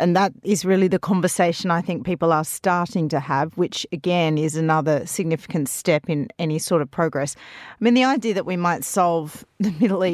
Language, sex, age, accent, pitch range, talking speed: English, female, 40-59, Australian, 155-190 Hz, 200 wpm